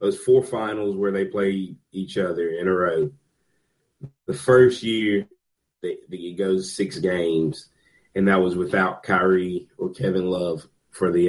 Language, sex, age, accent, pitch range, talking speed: English, male, 30-49, American, 95-130 Hz, 160 wpm